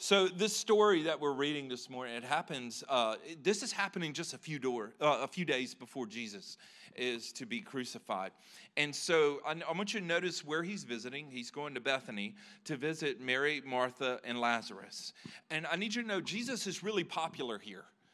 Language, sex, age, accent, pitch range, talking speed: English, male, 40-59, American, 145-195 Hz, 190 wpm